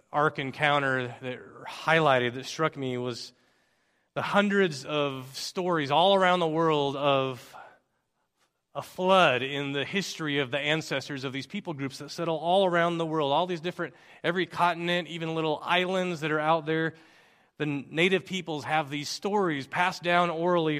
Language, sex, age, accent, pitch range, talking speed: English, male, 30-49, American, 145-175 Hz, 160 wpm